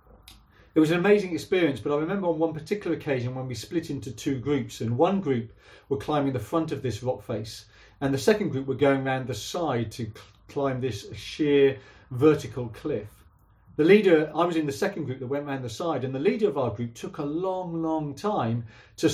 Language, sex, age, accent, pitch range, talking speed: English, male, 40-59, British, 120-160 Hz, 220 wpm